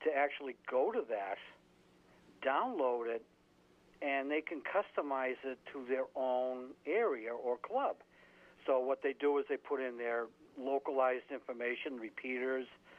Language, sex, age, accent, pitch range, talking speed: English, male, 60-79, American, 125-155 Hz, 140 wpm